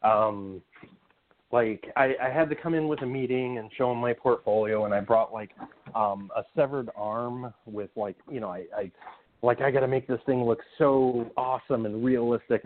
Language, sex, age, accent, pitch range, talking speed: English, male, 30-49, American, 110-140 Hz, 200 wpm